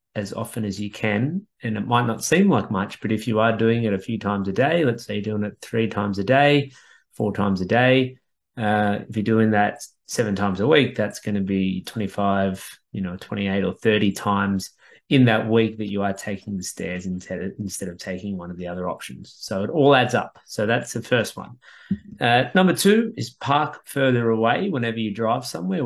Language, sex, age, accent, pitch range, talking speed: English, male, 30-49, Australian, 100-115 Hz, 220 wpm